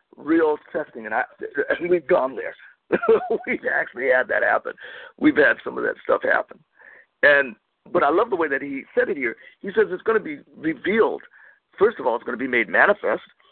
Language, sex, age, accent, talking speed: English, male, 50-69, American, 210 wpm